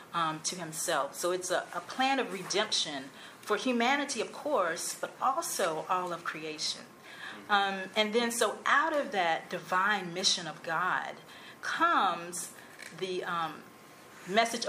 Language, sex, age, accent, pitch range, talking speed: English, female, 40-59, American, 170-230 Hz, 140 wpm